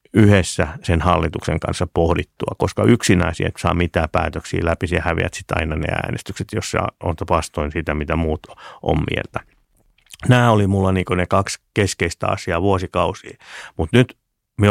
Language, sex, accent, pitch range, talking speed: Finnish, male, native, 85-100 Hz, 155 wpm